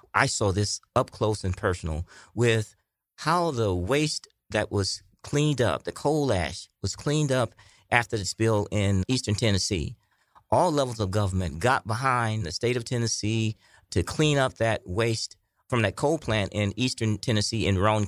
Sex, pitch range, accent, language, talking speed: male, 100-130 Hz, American, English, 170 wpm